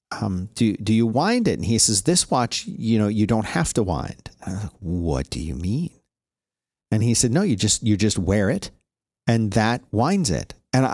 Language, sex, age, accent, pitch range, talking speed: English, male, 40-59, American, 100-120 Hz, 205 wpm